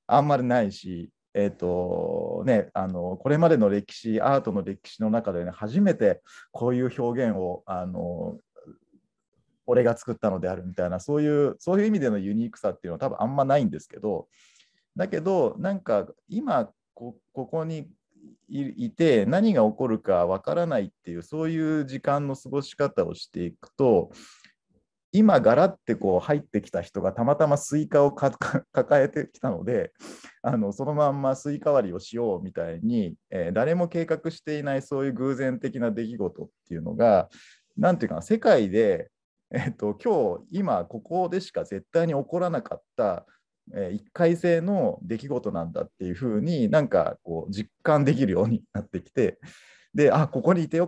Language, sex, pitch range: Japanese, male, 105-165 Hz